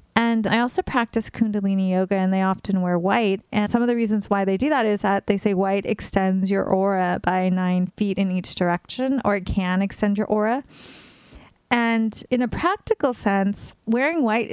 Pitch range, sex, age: 195-240 Hz, female, 30-49